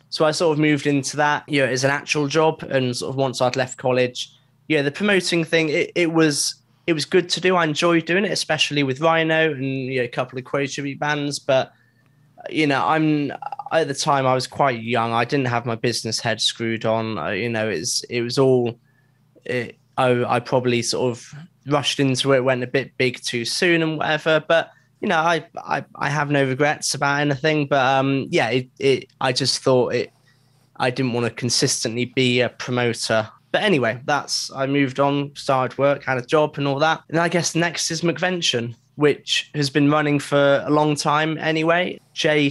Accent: British